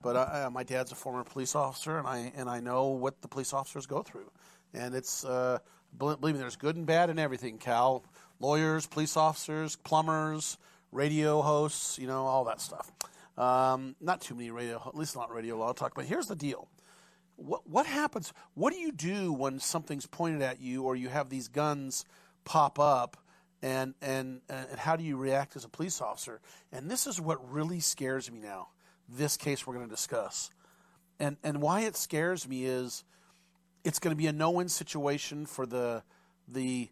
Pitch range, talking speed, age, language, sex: 130-165 Hz, 190 wpm, 40-59, English, male